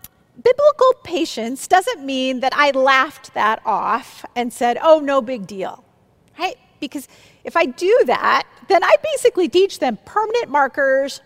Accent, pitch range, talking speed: American, 225-305 Hz, 150 wpm